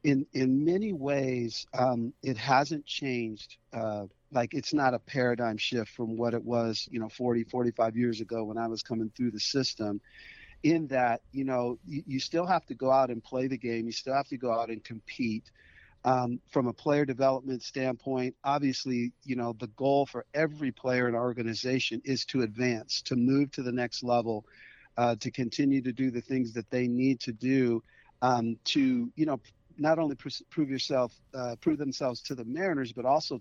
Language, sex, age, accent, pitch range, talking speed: English, male, 50-69, American, 120-140 Hz, 195 wpm